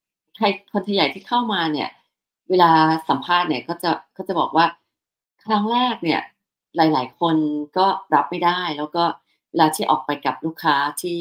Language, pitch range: Thai, 155-195 Hz